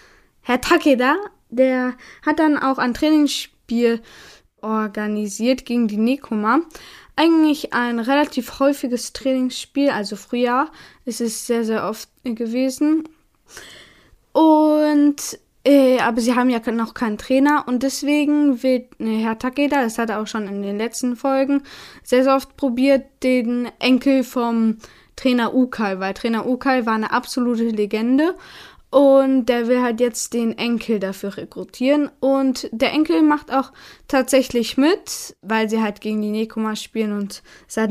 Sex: female